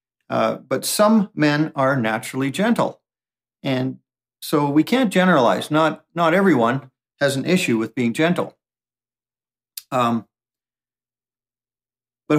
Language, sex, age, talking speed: English, male, 50-69, 110 wpm